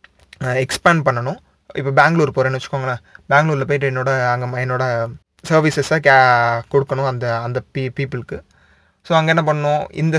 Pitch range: 125-155 Hz